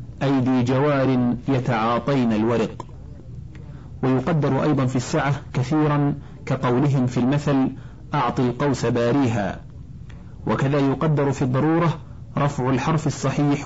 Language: Arabic